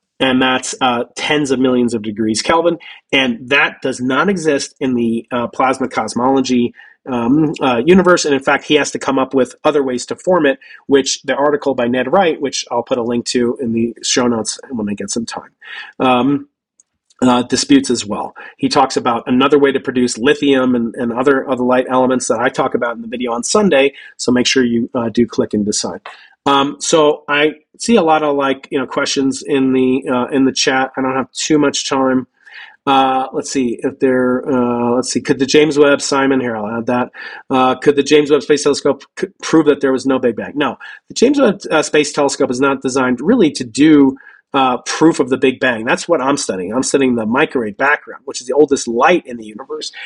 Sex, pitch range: male, 125-145 Hz